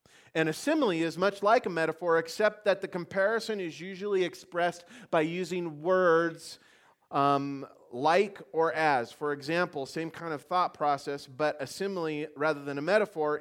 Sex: male